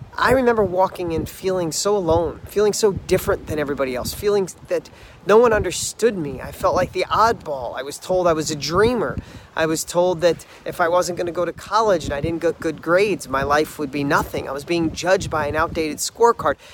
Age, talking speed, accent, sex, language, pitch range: 30-49, 220 wpm, American, male, English, 180-245 Hz